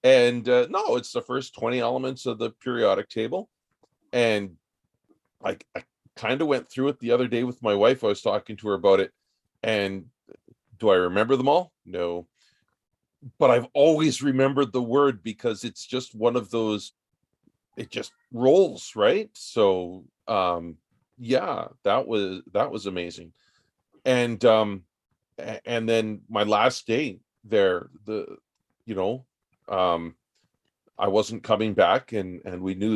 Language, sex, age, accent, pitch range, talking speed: English, male, 40-59, American, 105-130 Hz, 150 wpm